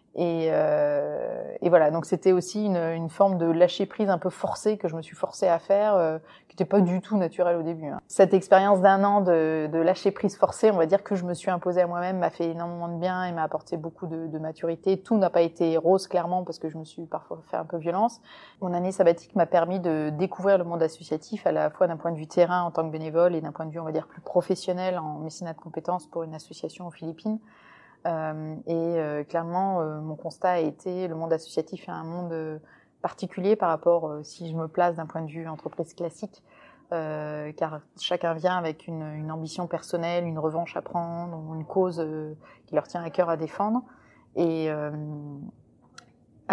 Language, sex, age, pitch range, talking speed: French, female, 20-39, 160-185 Hz, 230 wpm